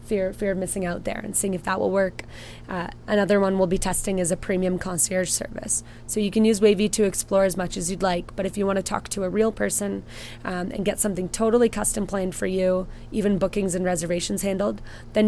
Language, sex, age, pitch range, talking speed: English, female, 20-39, 180-200 Hz, 230 wpm